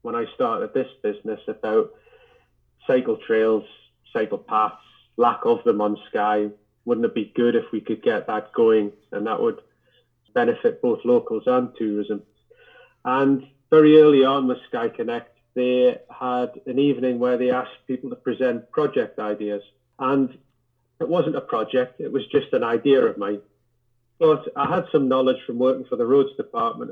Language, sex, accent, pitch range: English, male, British, 120-150 Hz